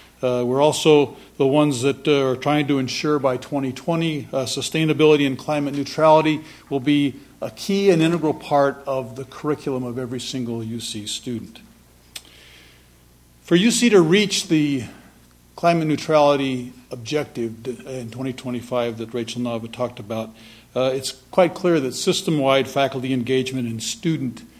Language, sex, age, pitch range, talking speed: English, male, 50-69, 120-150 Hz, 145 wpm